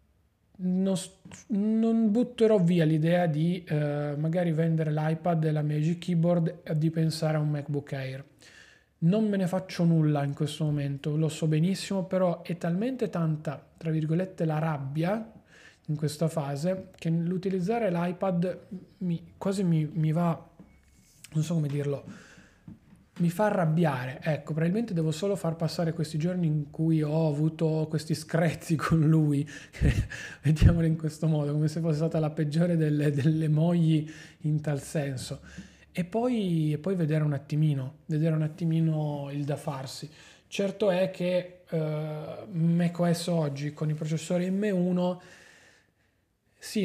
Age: 30-49